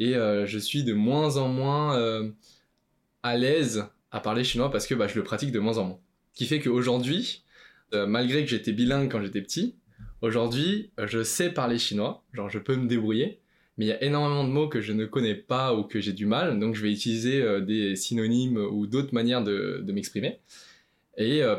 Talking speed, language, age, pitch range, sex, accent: 220 wpm, French, 20-39, 105-130 Hz, male, French